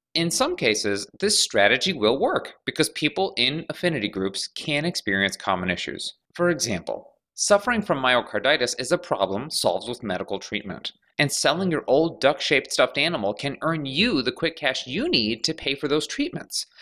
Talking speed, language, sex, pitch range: 170 wpm, English, male, 110-180 Hz